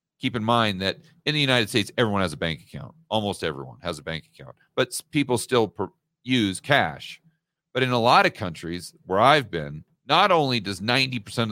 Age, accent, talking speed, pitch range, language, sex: 40-59, American, 200 wpm, 110-155 Hz, English, male